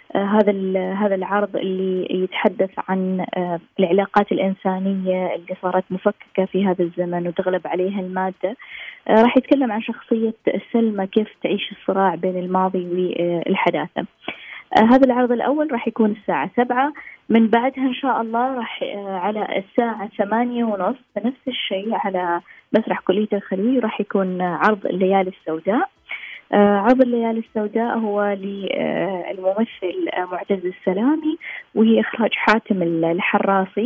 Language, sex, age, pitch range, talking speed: Arabic, female, 20-39, 190-225 Hz, 135 wpm